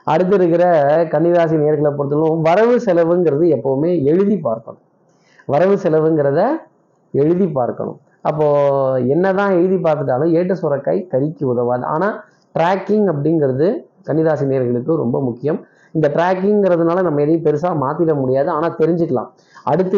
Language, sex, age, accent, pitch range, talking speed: Tamil, male, 20-39, native, 145-175 Hz, 115 wpm